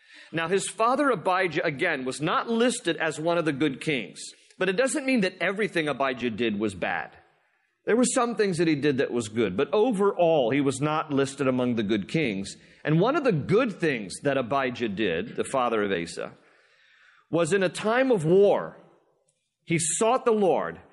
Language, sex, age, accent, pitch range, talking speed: English, male, 40-59, American, 135-180 Hz, 190 wpm